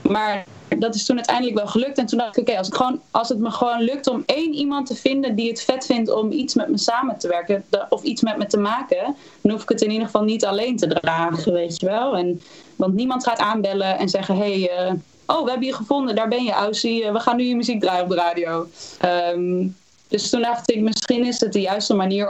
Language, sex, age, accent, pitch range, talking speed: Dutch, female, 20-39, Dutch, 190-240 Hz, 255 wpm